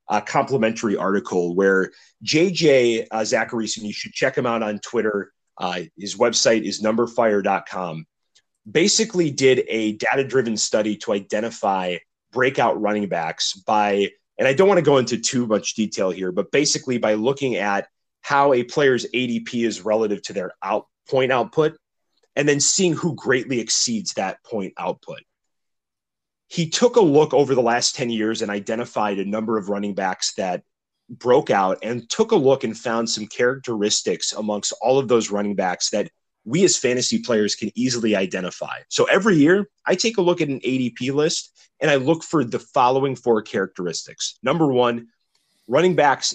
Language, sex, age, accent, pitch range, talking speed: English, male, 30-49, American, 105-140 Hz, 170 wpm